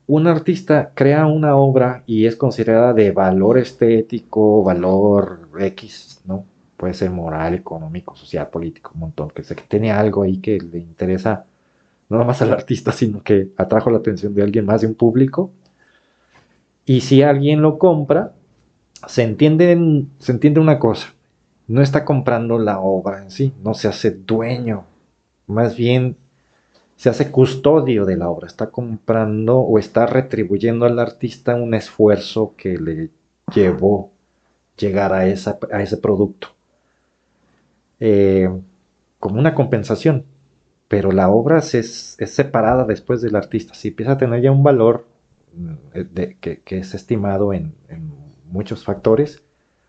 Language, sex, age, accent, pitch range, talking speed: Spanish, male, 40-59, Mexican, 100-135 Hz, 150 wpm